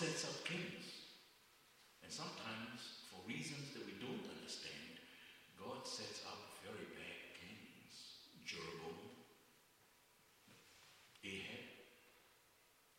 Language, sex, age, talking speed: English, male, 60-79, 90 wpm